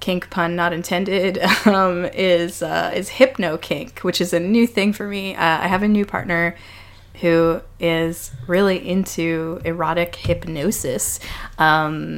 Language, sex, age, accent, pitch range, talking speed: English, female, 20-39, American, 155-185 Hz, 150 wpm